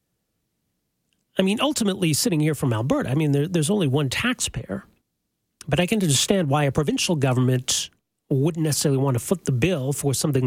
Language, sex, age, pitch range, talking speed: English, male, 40-59, 125-175 Hz, 170 wpm